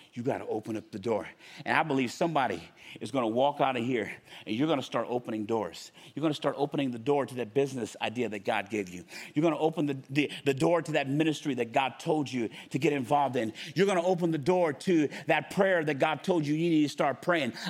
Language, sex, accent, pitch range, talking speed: English, male, American, 140-200 Hz, 260 wpm